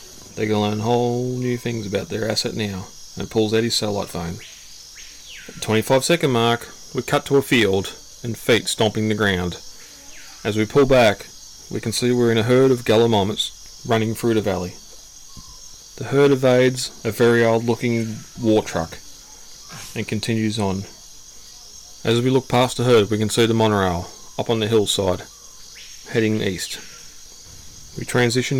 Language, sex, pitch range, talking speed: English, male, 100-125 Hz, 165 wpm